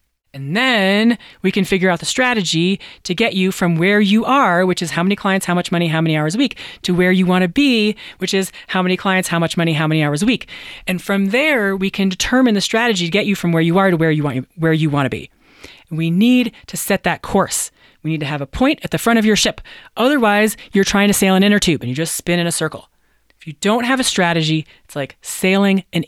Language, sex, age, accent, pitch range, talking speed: English, female, 30-49, American, 165-210 Hz, 265 wpm